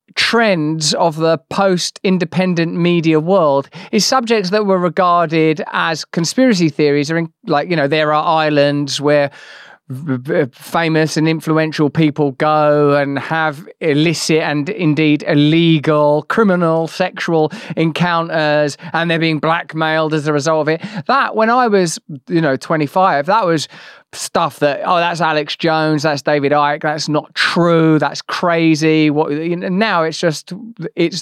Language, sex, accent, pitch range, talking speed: English, male, British, 150-180 Hz, 140 wpm